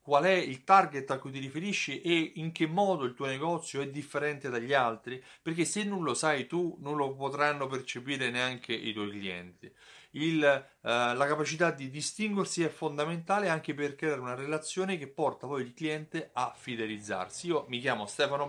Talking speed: 180 wpm